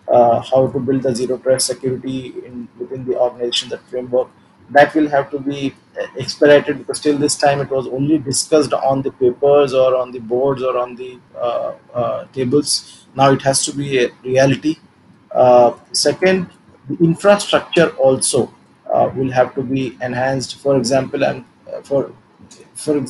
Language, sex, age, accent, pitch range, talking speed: English, male, 20-39, Indian, 130-150 Hz, 165 wpm